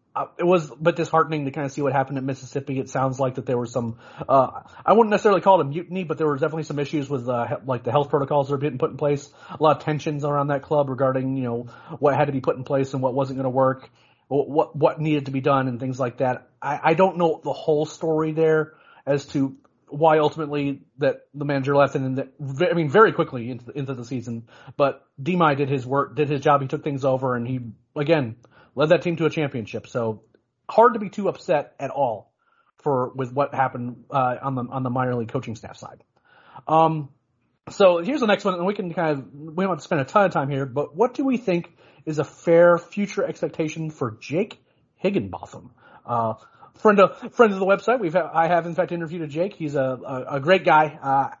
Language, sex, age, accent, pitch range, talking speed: English, male, 30-49, American, 135-165 Hz, 240 wpm